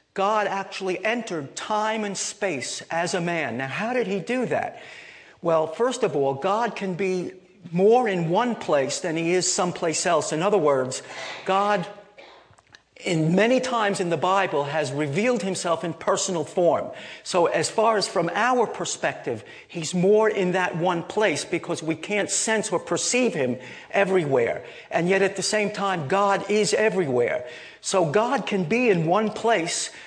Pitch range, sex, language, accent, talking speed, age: 165-210 Hz, male, English, American, 170 wpm, 50-69